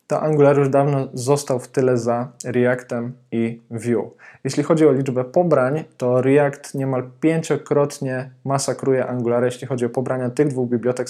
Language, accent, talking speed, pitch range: Polish, native, 155 wpm, 130-155 Hz